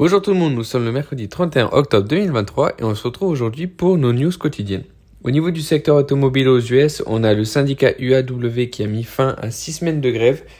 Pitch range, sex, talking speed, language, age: 105-135 Hz, male, 230 wpm, French, 20-39